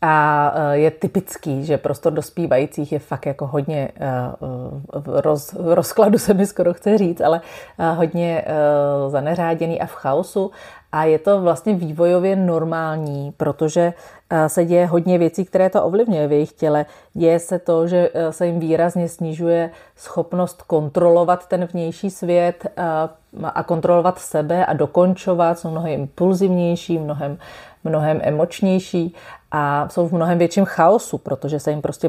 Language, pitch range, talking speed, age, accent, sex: Czech, 155-175 Hz, 140 wpm, 30-49, native, female